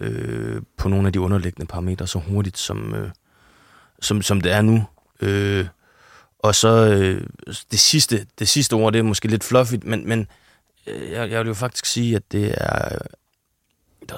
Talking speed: 180 wpm